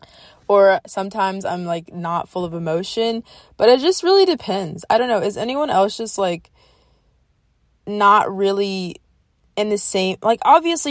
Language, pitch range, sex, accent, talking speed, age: English, 190-240 Hz, female, American, 155 wpm, 20-39